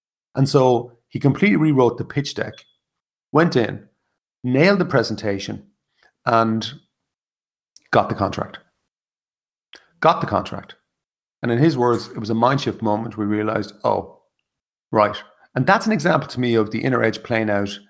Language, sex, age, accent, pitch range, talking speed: English, male, 30-49, Irish, 105-130 Hz, 155 wpm